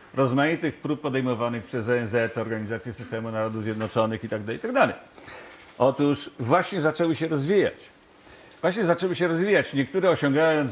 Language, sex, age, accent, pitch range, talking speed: Polish, male, 50-69, native, 120-175 Hz, 125 wpm